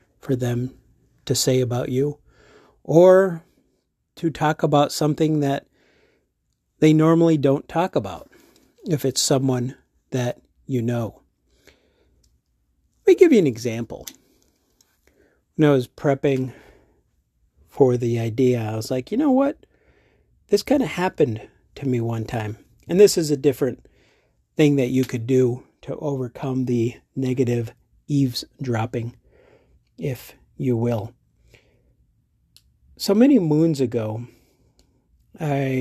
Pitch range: 120-145 Hz